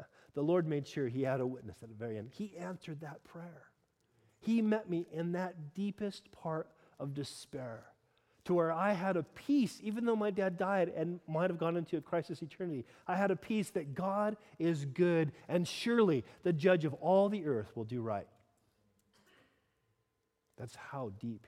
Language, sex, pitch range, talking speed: English, male, 155-205 Hz, 185 wpm